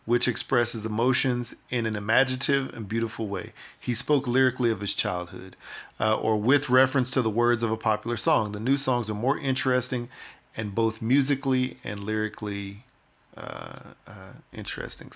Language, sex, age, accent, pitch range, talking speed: English, male, 40-59, American, 110-125 Hz, 160 wpm